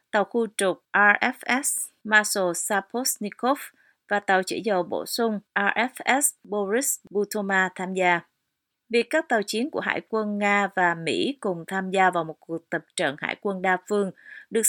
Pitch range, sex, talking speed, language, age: 180-220 Hz, female, 165 wpm, Vietnamese, 30-49